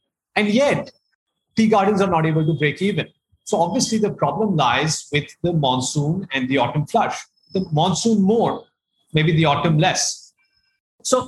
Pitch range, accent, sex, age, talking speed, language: 150-195 Hz, Indian, male, 30-49, 160 wpm, English